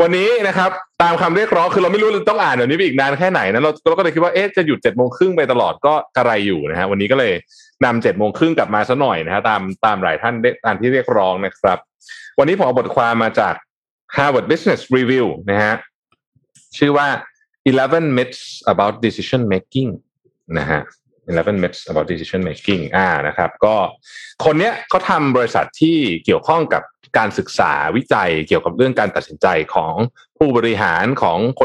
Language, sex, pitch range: Thai, male, 115-170 Hz